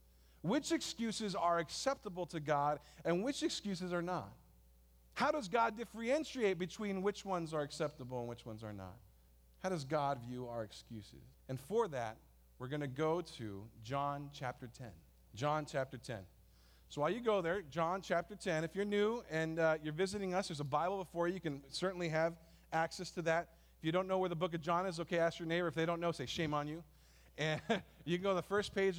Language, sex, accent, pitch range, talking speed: English, male, American, 130-180 Hz, 215 wpm